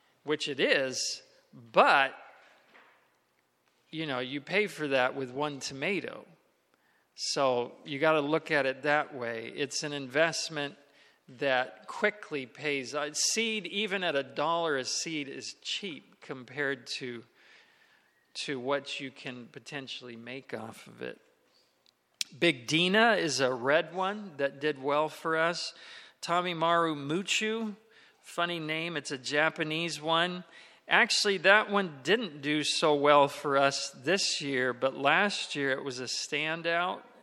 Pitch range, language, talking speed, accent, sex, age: 130-165 Hz, English, 140 wpm, American, male, 40-59